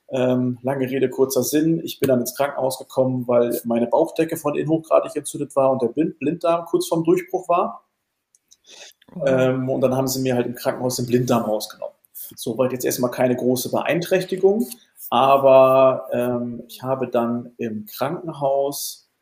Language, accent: German, German